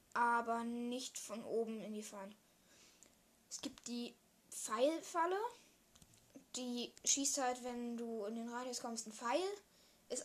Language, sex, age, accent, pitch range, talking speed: German, female, 10-29, German, 230-265 Hz, 135 wpm